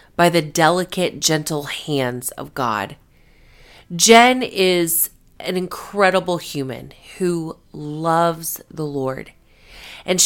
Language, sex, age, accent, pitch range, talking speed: English, female, 30-49, American, 150-185 Hz, 100 wpm